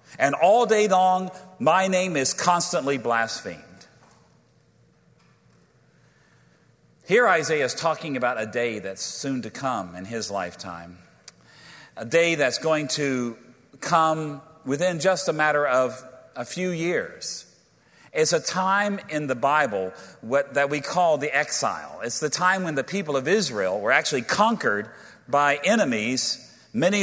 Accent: American